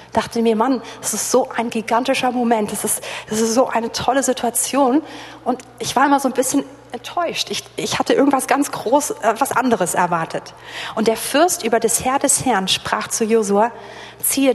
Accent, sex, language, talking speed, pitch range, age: German, female, German, 200 wpm, 200-245 Hz, 40-59